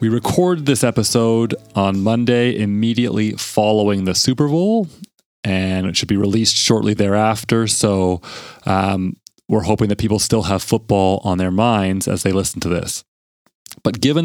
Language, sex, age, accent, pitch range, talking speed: English, male, 30-49, American, 100-115 Hz, 155 wpm